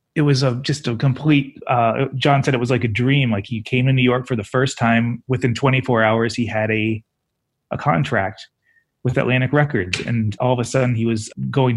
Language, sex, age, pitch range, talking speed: English, male, 30-49, 115-135 Hz, 220 wpm